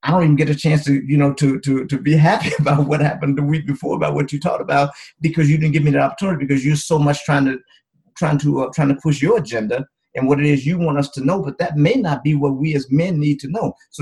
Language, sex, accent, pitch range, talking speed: English, male, American, 140-160 Hz, 290 wpm